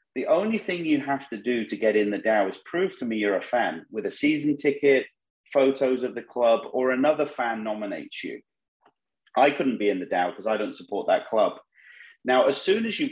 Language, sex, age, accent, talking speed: English, male, 30-49, British, 225 wpm